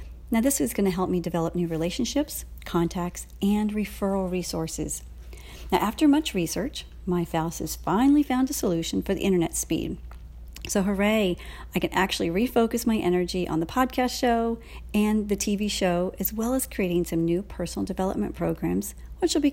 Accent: American